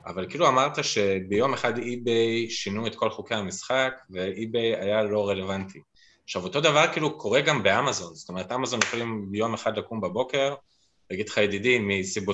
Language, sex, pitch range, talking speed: Hebrew, male, 105-135 Hz, 160 wpm